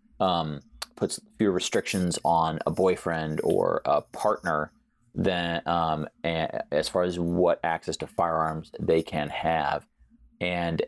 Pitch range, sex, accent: 80-95 Hz, male, American